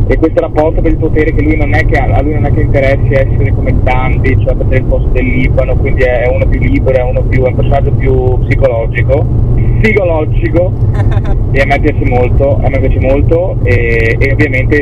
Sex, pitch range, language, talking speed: male, 105-125 Hz, Italian, 215 wpm